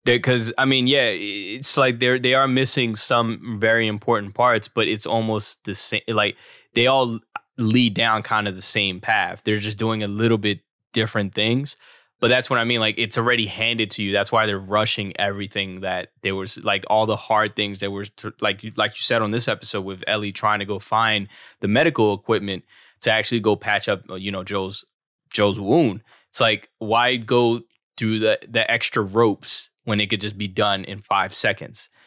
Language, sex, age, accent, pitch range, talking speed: English, male, 20-39, American, 105-120 Hz, 200 wpm